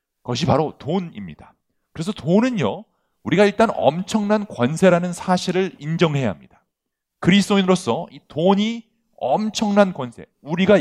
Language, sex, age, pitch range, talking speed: English, male, 40-59, 130-185 Hz, 100 wpm